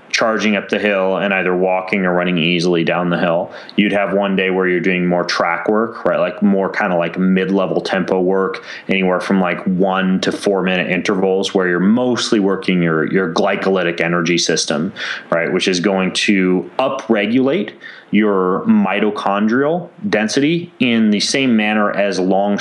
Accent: American